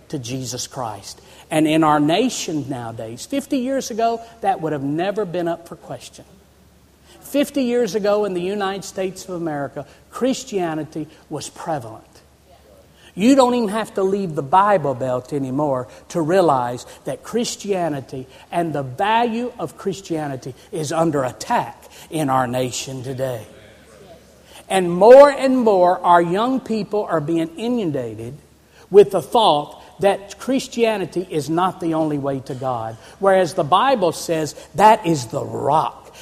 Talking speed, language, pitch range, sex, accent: 145 wpm, English, 155-225 Hz, male, American